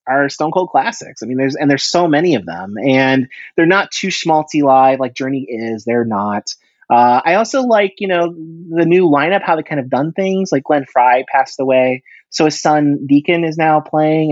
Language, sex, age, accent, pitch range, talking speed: English, male, 30-49, American, 125-155 Hz, 215 wpm